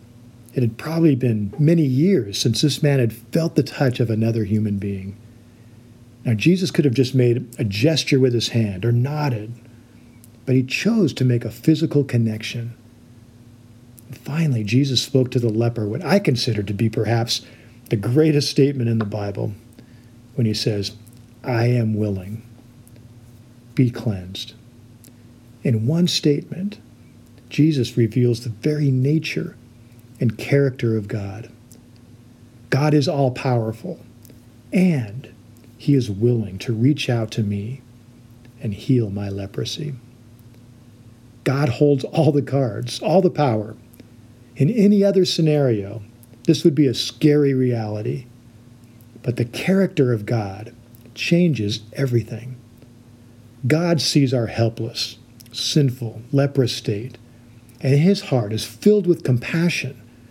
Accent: American